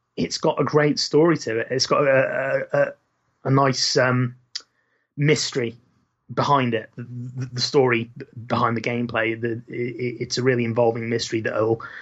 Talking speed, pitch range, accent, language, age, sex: 155 wpm, 115-135 Hz, British, English, 30-49, male